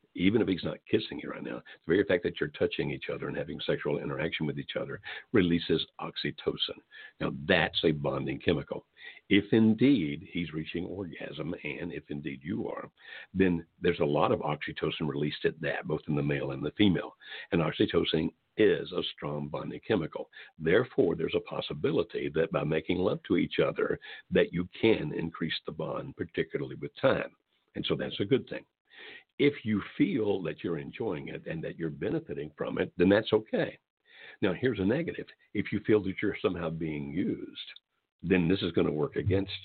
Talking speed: 190 wpm